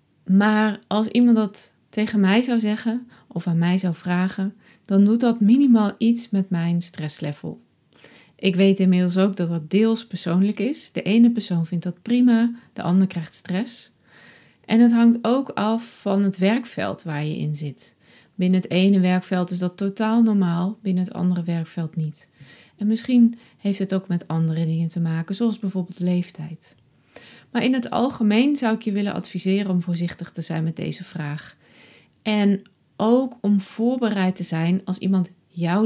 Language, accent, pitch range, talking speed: Dutch, Dutch, 175-215 Hz, 170 wpm